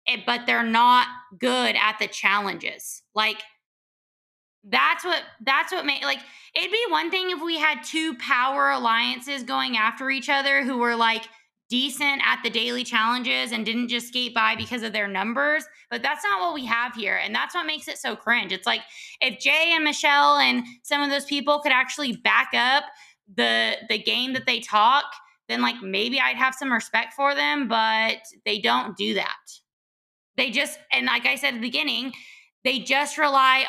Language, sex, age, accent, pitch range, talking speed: English, female, 20-39, American, 225-285 Hz, 190 wpm